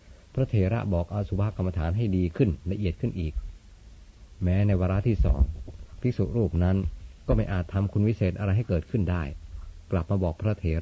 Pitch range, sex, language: 80-100 Hz, male, Thai